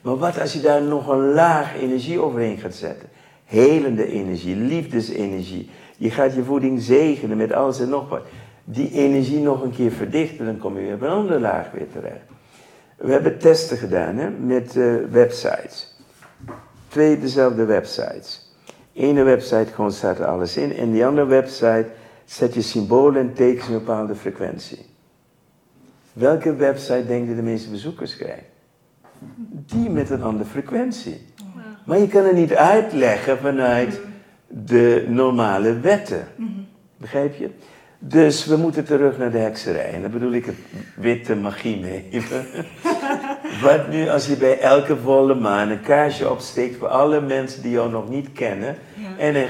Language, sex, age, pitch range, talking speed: Dutch, male, 60-79, 115-155 Hz, 160 wpm